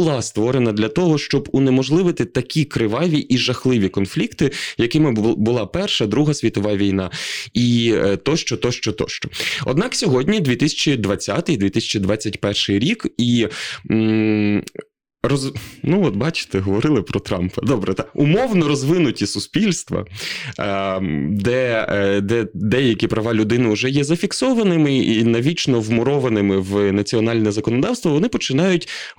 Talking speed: 110 wpm